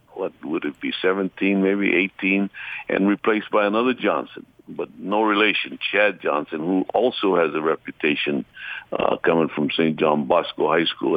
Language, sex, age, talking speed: English, male, 60-79, 160 wpm